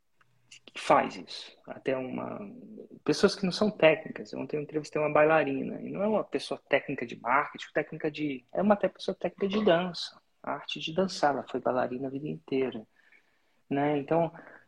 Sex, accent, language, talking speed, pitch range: male, Brazilian, Portuguese, 170 wpm, 140-170 Hz